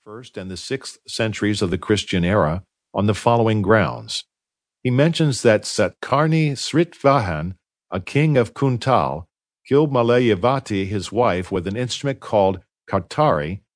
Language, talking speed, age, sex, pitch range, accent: English, 135 wpm, 50-69, male, 95-125 Hz, American